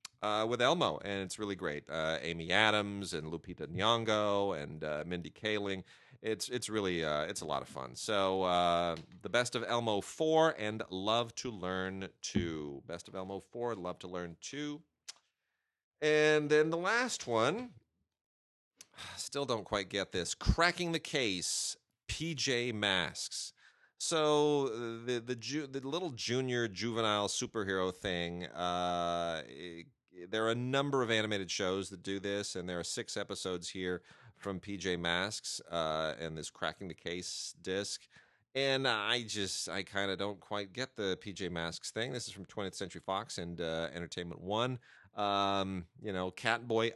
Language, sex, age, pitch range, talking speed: English, male, 30-49, 85-115 Hz, 160 wpm